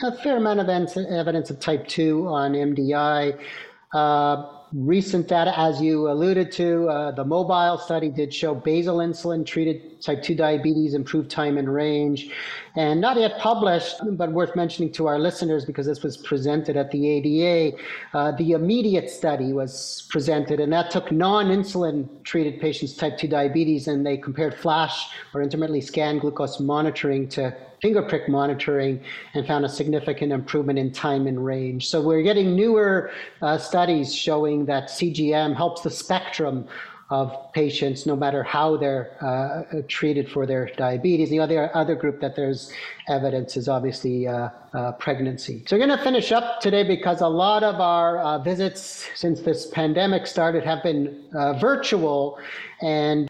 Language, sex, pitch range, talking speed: English, male, 145-175 Hz, 160 wpm